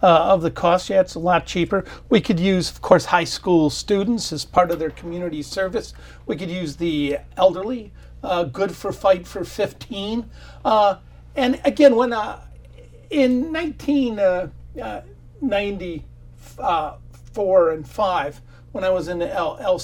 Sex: male